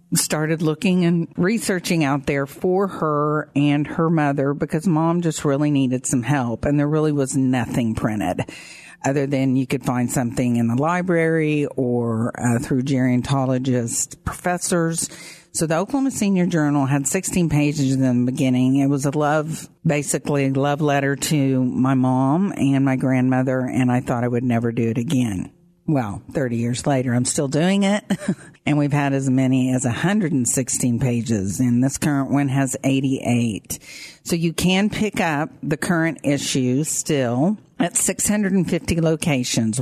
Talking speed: 160 wpm